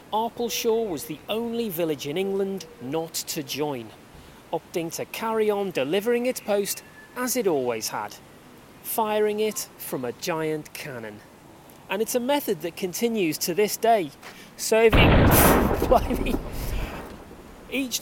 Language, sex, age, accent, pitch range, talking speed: English, male, 30-49, British, 160-225 Hz, 125 wpm